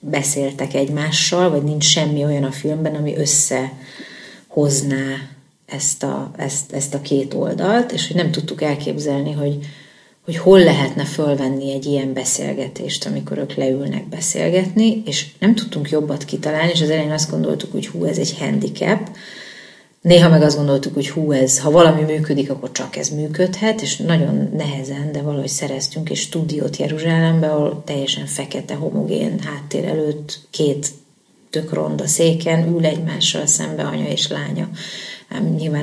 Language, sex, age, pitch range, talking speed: Hungarian, female, 30-49, 140-165 Hz, 150 wpm